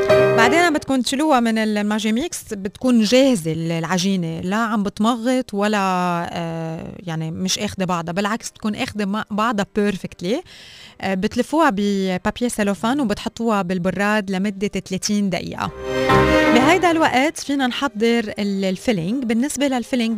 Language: Arabic